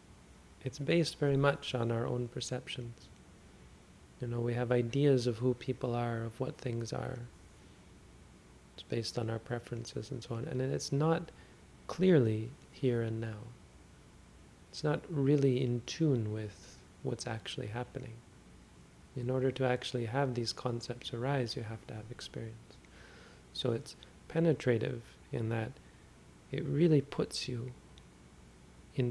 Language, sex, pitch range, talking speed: English, male, 95-125 Hz, 140 wpm